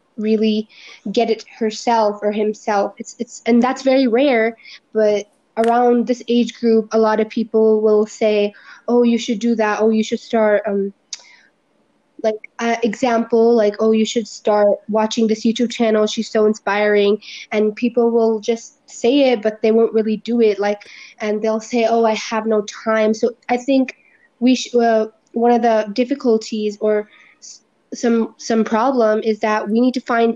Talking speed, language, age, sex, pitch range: 175 wpm, English, 20-39, female, 215-235 Hz